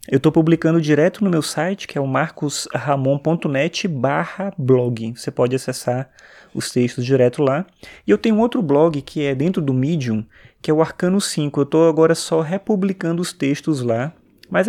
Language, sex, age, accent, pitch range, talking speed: Portuguese, male, 20-39, Brazilian, 125-155 Hz, 175 wpm